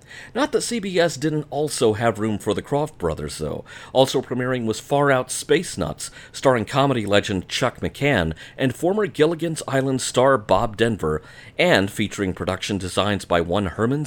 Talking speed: 160 wpm